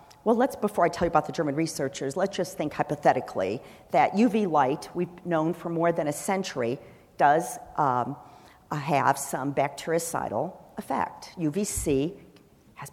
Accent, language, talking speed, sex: American, English, 150 wpm, female